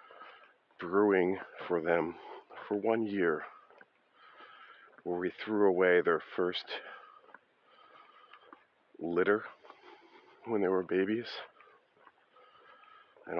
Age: 40-59